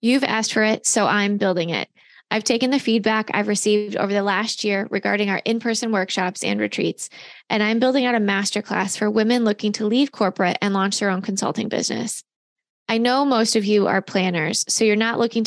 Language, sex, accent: English, female, American